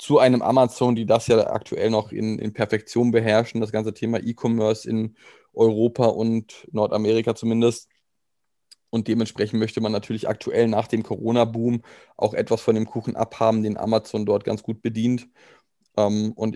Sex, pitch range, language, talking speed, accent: male, 110-130 Hz, German, 155 wpm, German